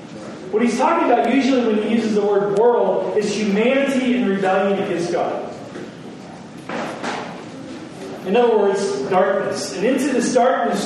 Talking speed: 140 wpm